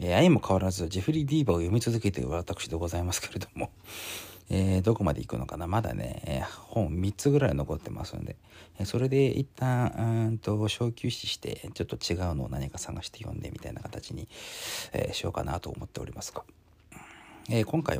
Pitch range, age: 90-130 Hz, 40-59